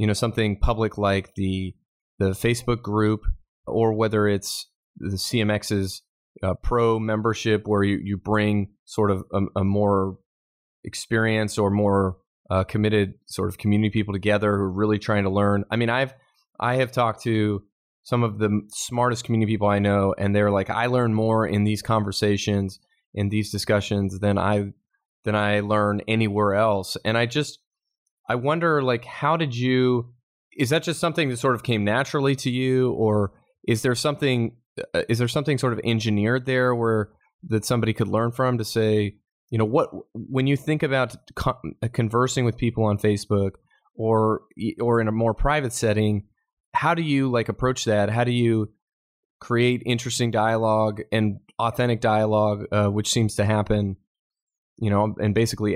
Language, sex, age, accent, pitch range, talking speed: English, male, 30-49, American, 105-120 Hz, 170 wpm